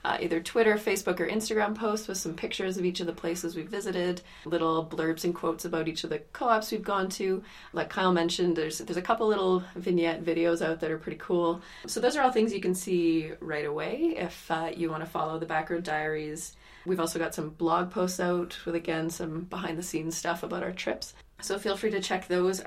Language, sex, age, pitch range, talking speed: English, female, 30-49, 165-190 Hz, 220 wpm